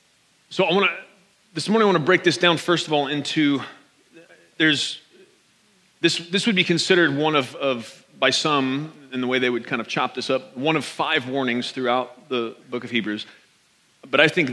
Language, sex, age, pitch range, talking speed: English, male, 30-49, 125-165 Hz, 200 wpm